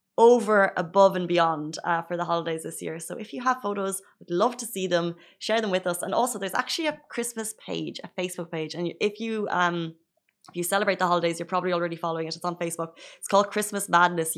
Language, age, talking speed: Arabic, 20-39, 230 wpm